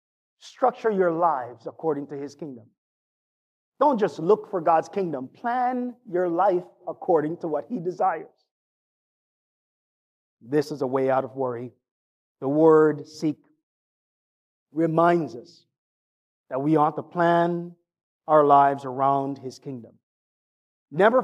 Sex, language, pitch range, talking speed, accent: male, English, 145-190 Hz, 125 wpm, American